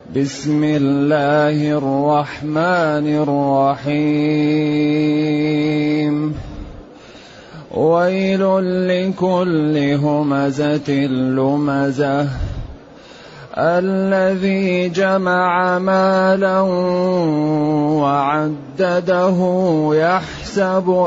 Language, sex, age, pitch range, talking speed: Arabic, male, 30-49, 150-190 Hz, 35 wpm